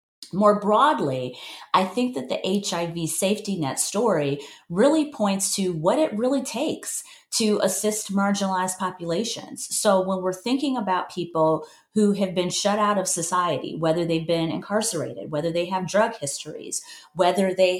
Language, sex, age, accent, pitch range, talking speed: English, female, 30-49, American, 165-210 Hz, 150 wpm